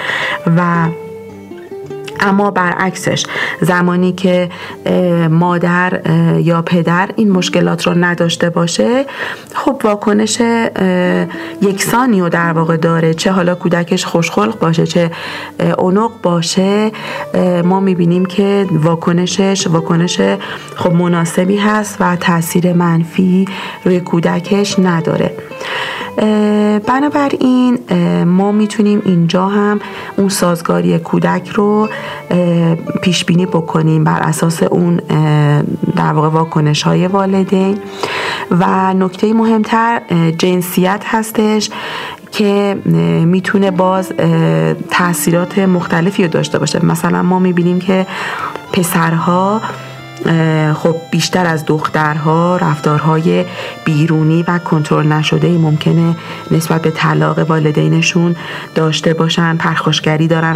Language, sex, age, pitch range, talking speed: Persian, female, 40-59, 165-195 Hz, 95 wpm